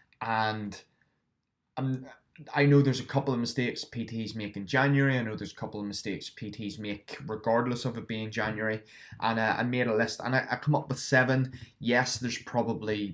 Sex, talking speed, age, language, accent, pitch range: male, 195 wpm, 20-39, English, British, 105-125 Hz